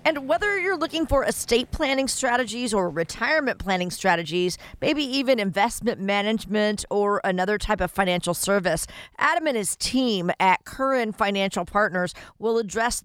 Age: 50-69